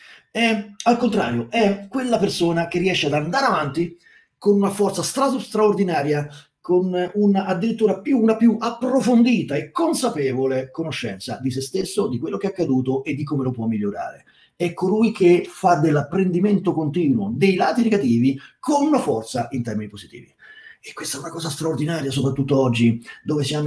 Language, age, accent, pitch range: Italian, 30-49, native, 130-195 Hz